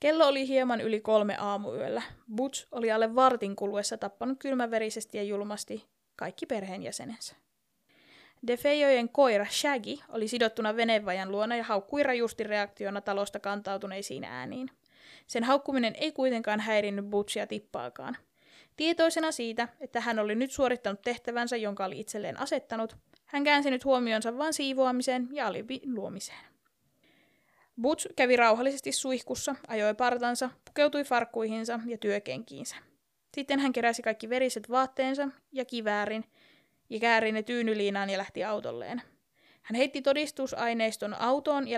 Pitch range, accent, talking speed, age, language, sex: 215-260 Hz, native, 130 wpm, 20-39, Finnish, female